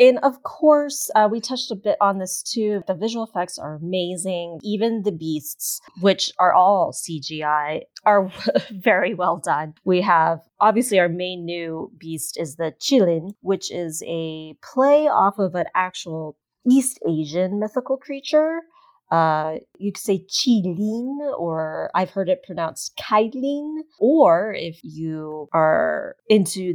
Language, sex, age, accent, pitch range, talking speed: English, female, 30-49, American, 175-255 Hz, 145 wpm